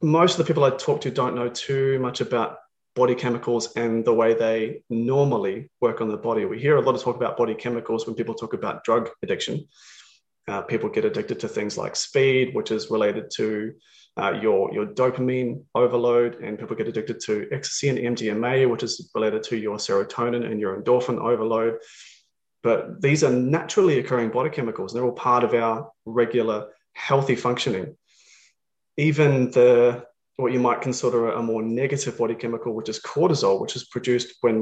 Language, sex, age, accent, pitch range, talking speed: English, male, 30-49, Australian, 115-130 Hz, 185 wpm